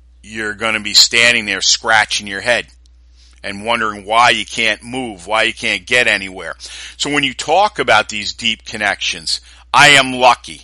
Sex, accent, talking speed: male, American, 175 wpm